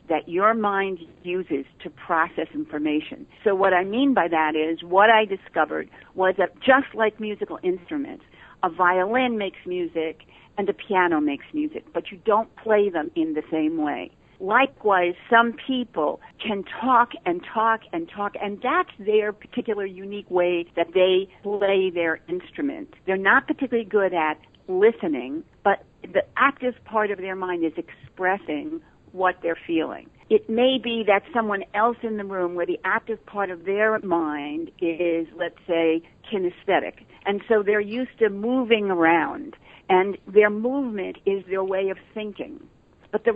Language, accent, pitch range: English, American, 180-240 Hz